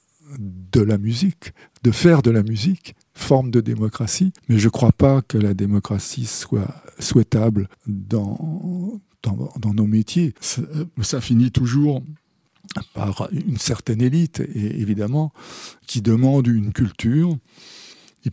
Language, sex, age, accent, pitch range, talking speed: French, male, 60-79, French, 105-135 Hz, 135 wpm